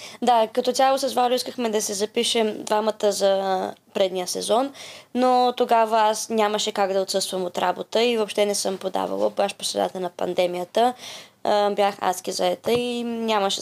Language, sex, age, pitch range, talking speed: Bulgarian, female, 20-39, 200-235 Hz, 160 wpm